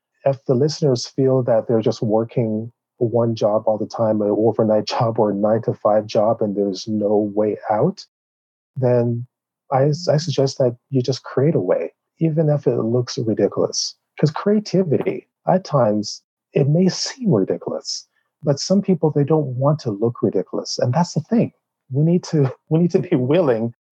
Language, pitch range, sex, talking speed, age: English, 110-140 Hz, male, 175 wpm, 40-59